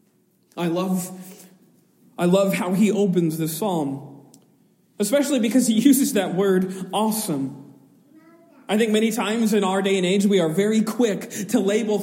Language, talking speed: English, 155 wpm